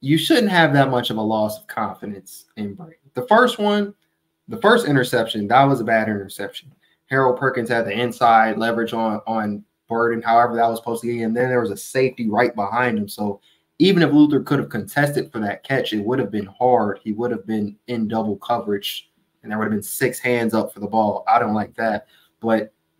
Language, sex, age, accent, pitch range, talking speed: English, male, 20-39, American, 110-135 Hz, 220 wpm